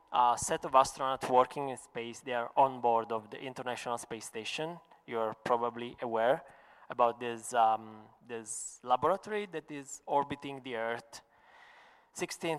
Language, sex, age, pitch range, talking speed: Italian, male, 20-39, 115-140 Hz, 155 wpm